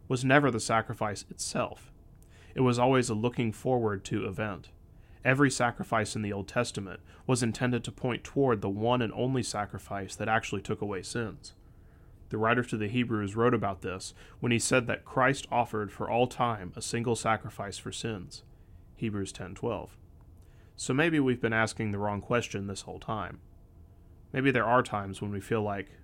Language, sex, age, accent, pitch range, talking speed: English, male, 30-49, American, 95-120 Hz, 180 wpm